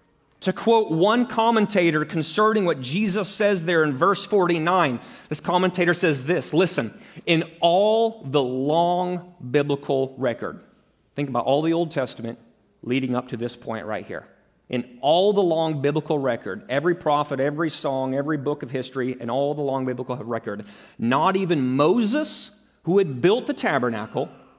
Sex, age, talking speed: male, 30-49, 155 wpm